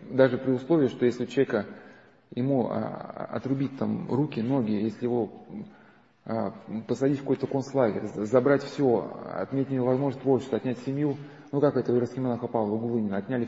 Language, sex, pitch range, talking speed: Russian, male, 125-150 Hz, 145 wpm